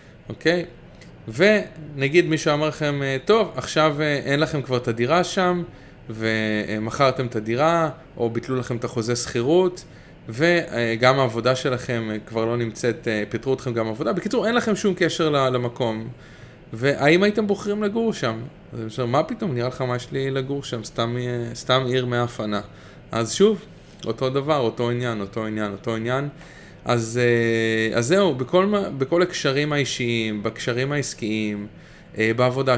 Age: 20-39